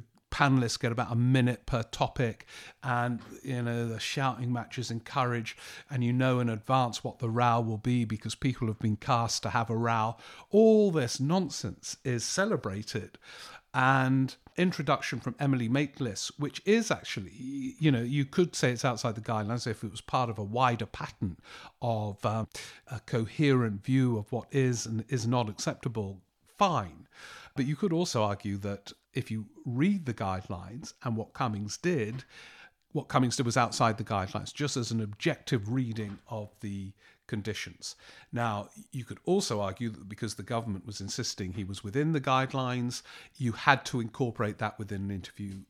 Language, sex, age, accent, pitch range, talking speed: English, male, 50-69, British, 110-130 Hz, 170 wpm